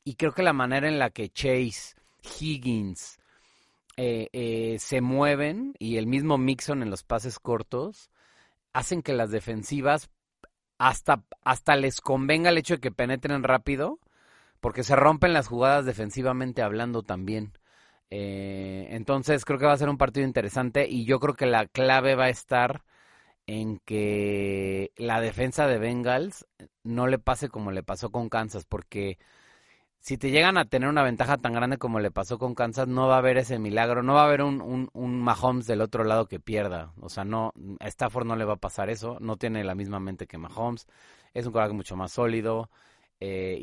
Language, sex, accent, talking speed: Spanish, male, Mexican, 185 wpm